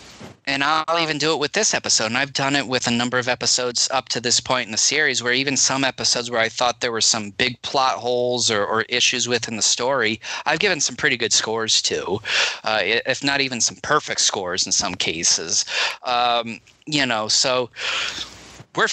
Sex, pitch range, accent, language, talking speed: male, 115-150 Hz, American, English, 205 wpm